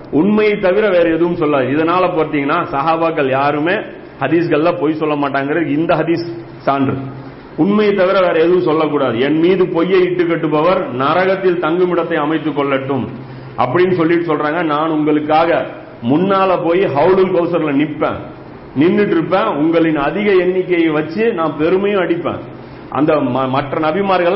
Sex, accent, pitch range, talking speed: male, native, 145-180 Hz, 125 wpm